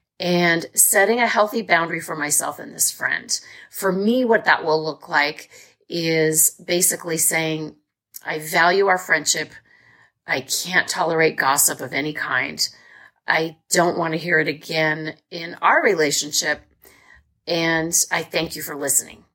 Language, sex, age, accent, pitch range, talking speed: English, female, 40-59, American, 155-195 Hz, 145 wpm